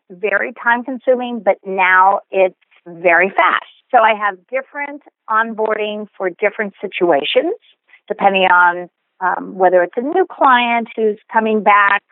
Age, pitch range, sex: 50-69, 185-235 Hz, female